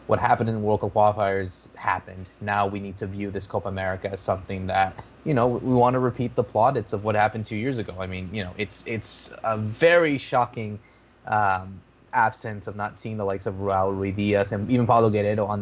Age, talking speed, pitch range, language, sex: 20-39, 225 wpm, 100-120 Hz, English, male